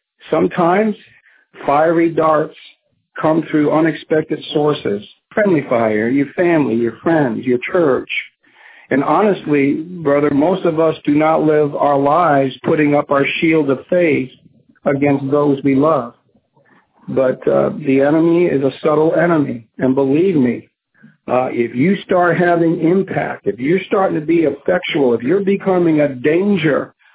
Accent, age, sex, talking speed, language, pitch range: American, 60-79, male, 140 wpm, English, 140-170 Hz